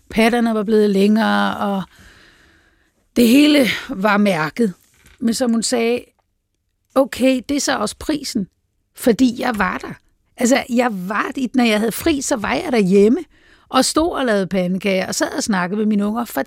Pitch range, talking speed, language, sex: 200-245 Hz, 175 wpm, Danish, female